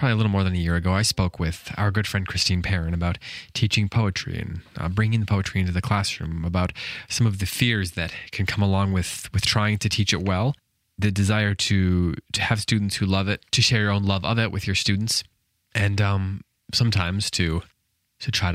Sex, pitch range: male, 90-110 Hz